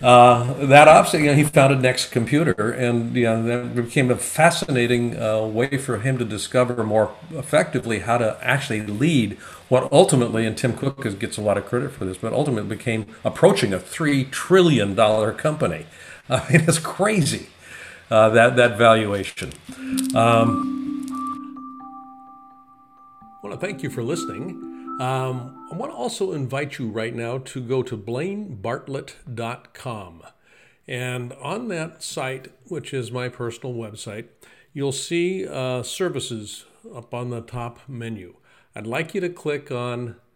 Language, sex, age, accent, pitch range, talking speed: English, male, 50-69, American, 115-140 Hz, 150 wpm